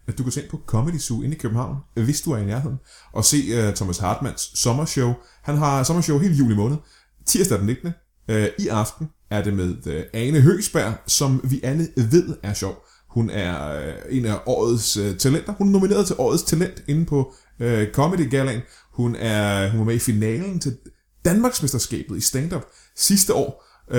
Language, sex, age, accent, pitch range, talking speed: Danish, male, 30-49, native, 105-145 Hz, 190 wpm